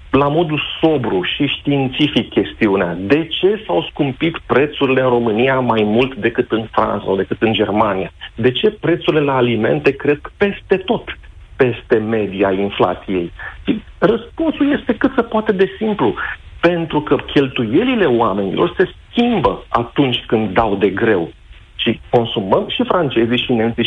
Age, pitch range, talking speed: 50-69, 110-150 Hz, 145 wpm